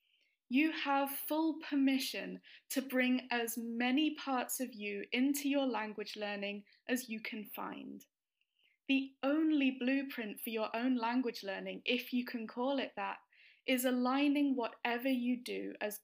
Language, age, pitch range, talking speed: English, 10-29, 220-275 Hz, 145 wpm